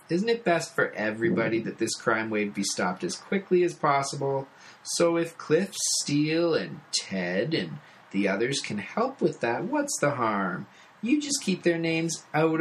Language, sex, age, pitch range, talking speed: English, male, 30-49, 105-165 Hz, 175 wpm